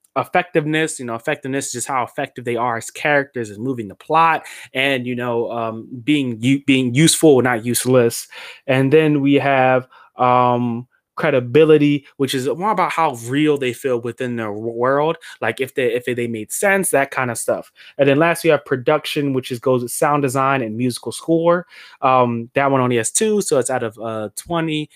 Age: 20-39